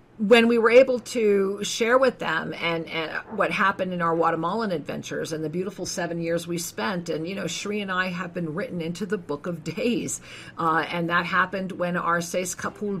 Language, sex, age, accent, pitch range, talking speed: English, female, 50-69, American, 160-190 Hz, 210 wpm